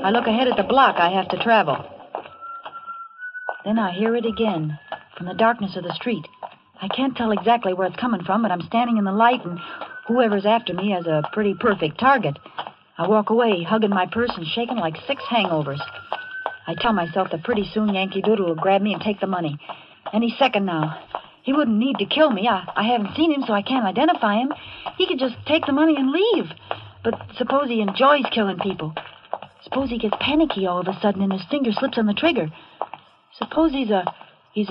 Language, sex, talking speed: English, female, 210 wpm